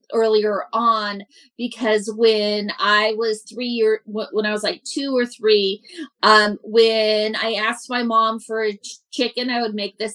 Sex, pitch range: female, 215-260 Hz